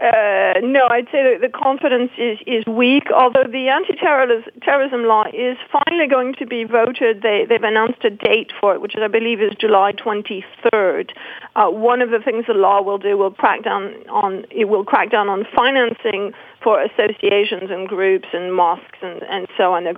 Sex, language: female, English